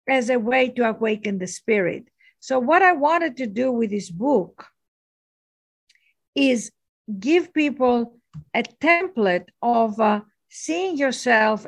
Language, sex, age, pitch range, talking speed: English, female, 50-69, 215-260 Hz, 130 wpm